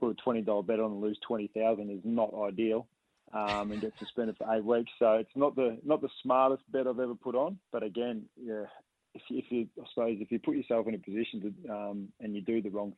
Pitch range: 105-115 Hz